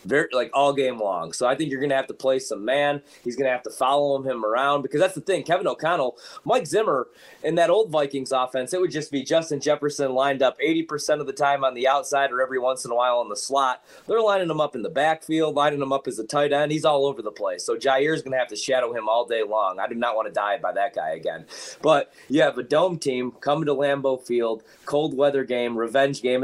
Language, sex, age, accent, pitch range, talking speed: English, male, 20-39, American, 135-160 Hz, 265 wpm